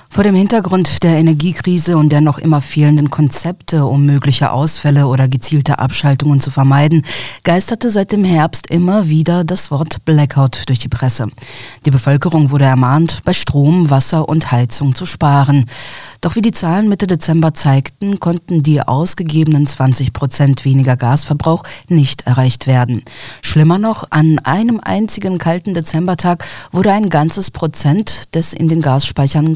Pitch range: 135-175 Hz